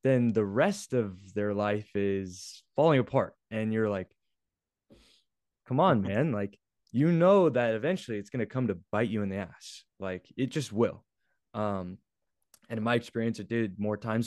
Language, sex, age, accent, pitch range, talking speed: English, male, 20-39, American, 100-120 Hz, 180 wpm